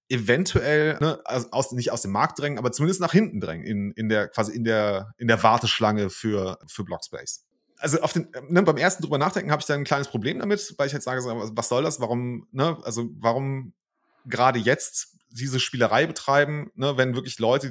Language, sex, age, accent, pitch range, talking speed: German, male, 30-49, German, 115-150 Hz, 205 wpm